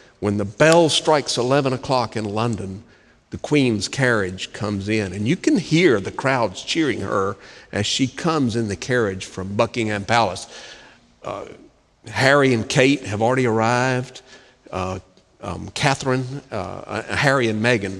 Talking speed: 150 wpm